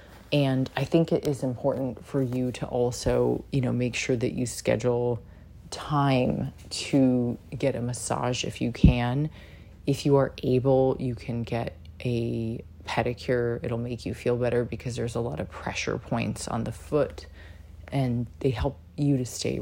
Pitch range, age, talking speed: 115-135 Hz, 30-49, 170 wpm